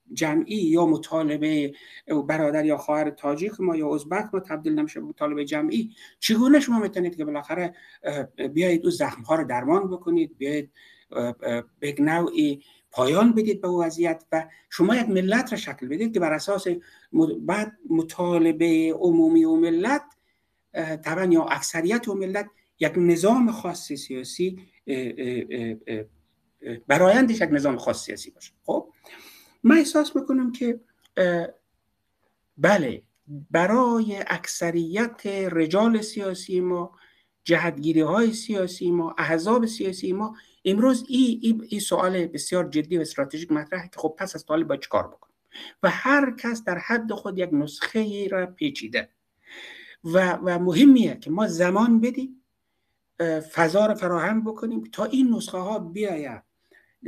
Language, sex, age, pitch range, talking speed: Persian, male, 60-79, 155-225 Hz, 135 wpm